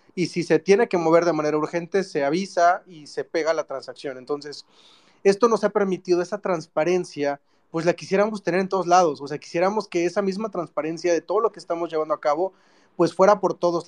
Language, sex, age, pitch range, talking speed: English, male, 30-49, 155-185 Hz, 210 wpm